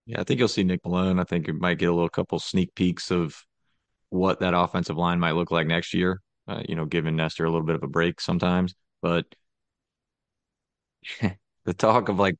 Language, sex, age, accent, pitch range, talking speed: English, male, 20-39, American, 90-100 Hz, 215 wpm